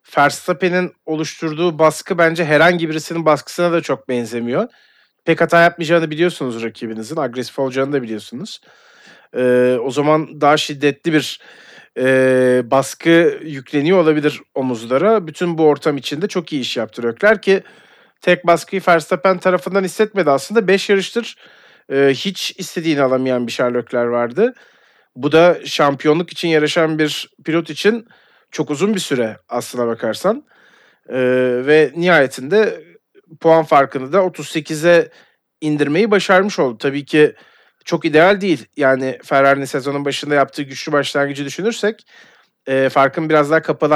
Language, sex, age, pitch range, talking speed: Turkish, male, 40-59, 140-180 Hz, 130 wpm